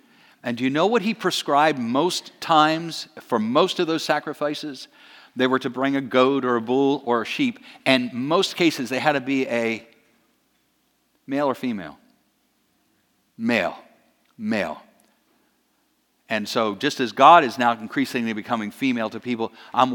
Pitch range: 125-160 Hz